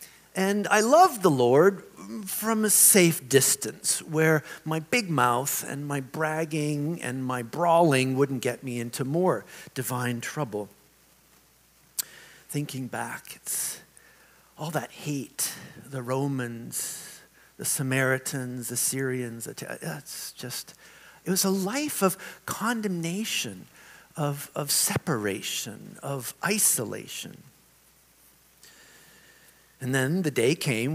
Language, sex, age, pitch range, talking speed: English, male, 50-69, 125-180 Hz, 110 wpm